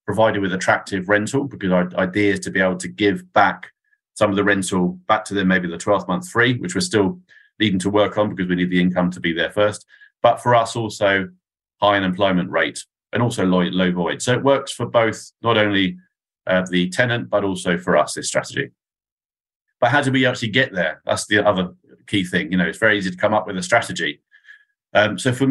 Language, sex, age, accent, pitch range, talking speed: English, male, 40-59, British, 95-115 Hz, 225 wpm